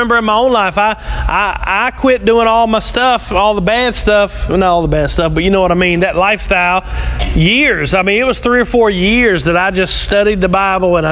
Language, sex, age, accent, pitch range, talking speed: English, male, 30-49, American, 185-235 Hz, 255 wpm